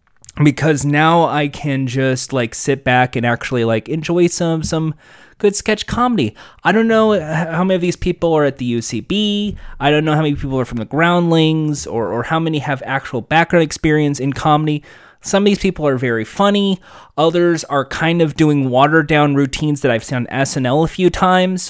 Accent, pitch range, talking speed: American, 135-180 Hz, 195 wpm